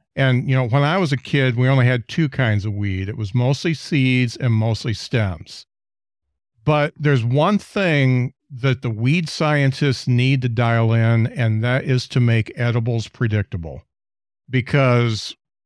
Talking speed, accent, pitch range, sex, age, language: 160 wpm, American, 110-135 Hz, male, 50-69, English